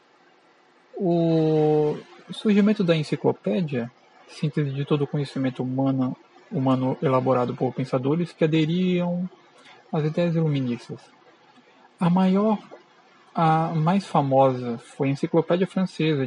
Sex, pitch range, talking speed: male, 145-185 Hz, 105 wpm